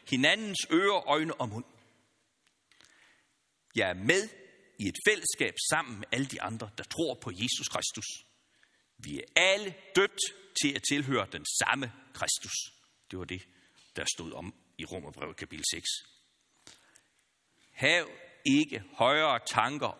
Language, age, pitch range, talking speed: Danish, 60-79, 105-175 Hz, 135 wpm